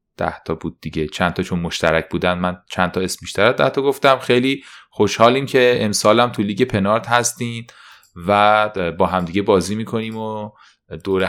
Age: 30-49